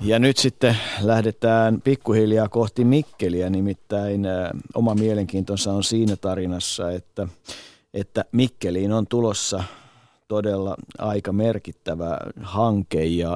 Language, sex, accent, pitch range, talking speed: Finnish, male, native, 95-110 Hz, 105 wpm